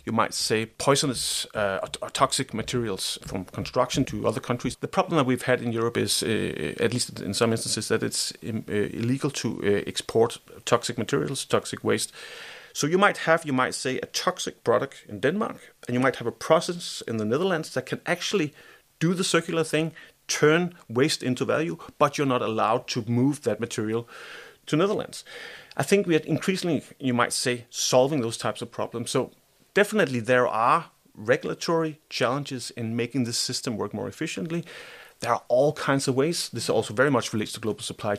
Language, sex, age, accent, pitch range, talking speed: English, male, 30-49, Danish, 115-150 Hz, 185 wpm